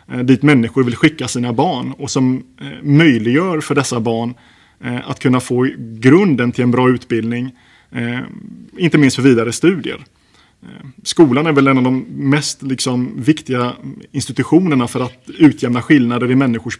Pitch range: 120-140 Hz